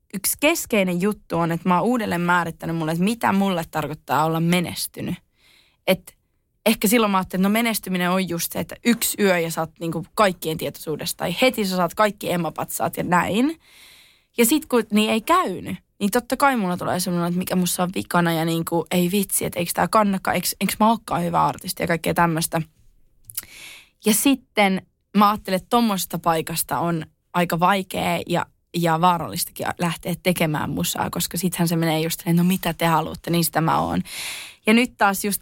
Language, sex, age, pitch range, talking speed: Finnish, female, 20-39, 170-215 Hz, 195 wpm